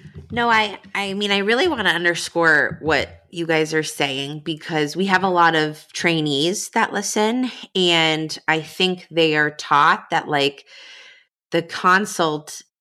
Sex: female